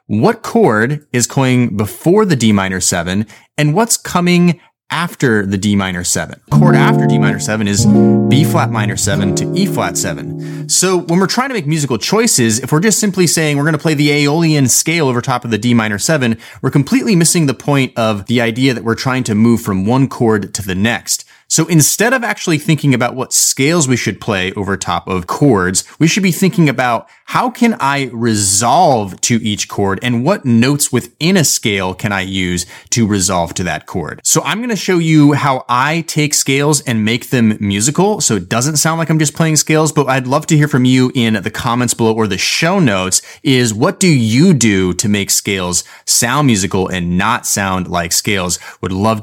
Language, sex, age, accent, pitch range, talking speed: English, male, 30-49, American, 105-150 Hz, 210 wpm